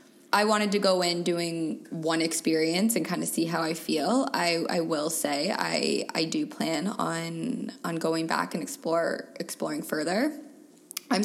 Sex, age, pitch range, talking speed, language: female, 20-39, 170-230 Hz, 165 wpm, English